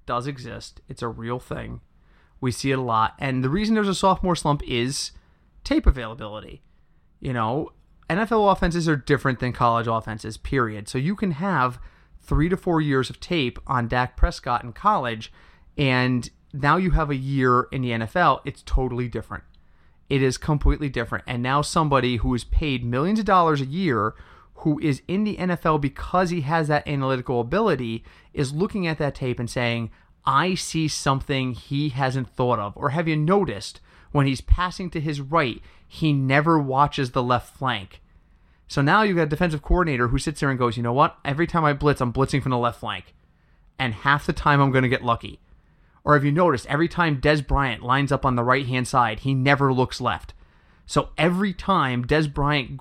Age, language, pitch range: 30-49, English, 120-155 Hz